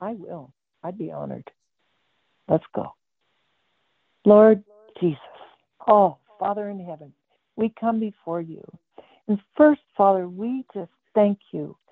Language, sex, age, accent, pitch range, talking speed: English, female, 60-79, American, 185-240 Hz, 120 wpm